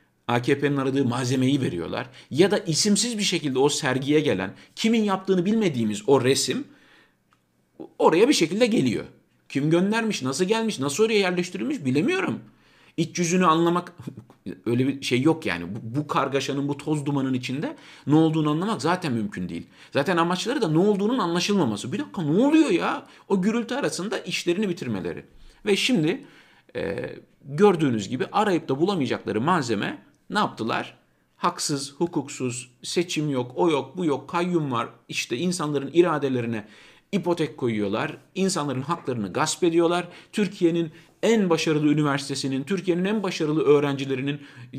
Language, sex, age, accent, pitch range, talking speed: Turkish, male, 50-69, native, 130-180 Hz, 140 wpm